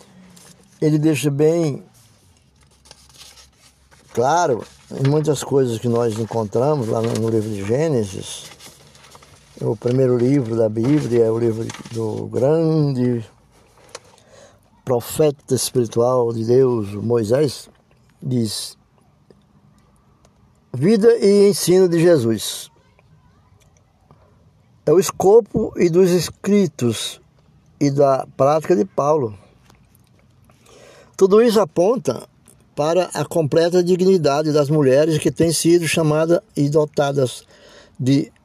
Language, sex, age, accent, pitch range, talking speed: Portuguese, male, 60-79, Brazilian, 115-165 Hz, 100 wpm